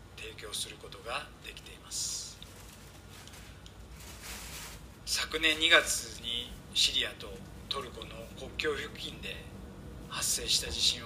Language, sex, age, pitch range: Japanese, male, 40-59, 95-125 Hz